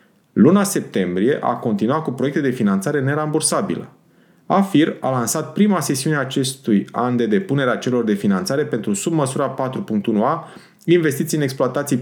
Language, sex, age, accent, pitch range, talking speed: Romanian, male, 30-49, native, 120-165 Hz, 140 wpm